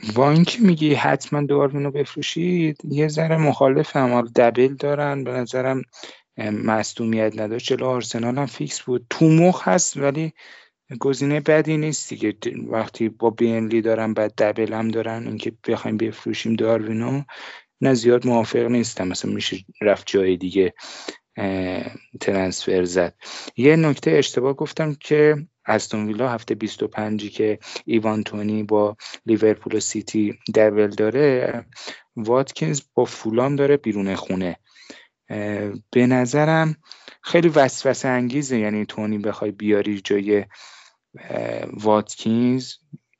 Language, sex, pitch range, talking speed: Persian, male, 110-140 Hz, 125 wpm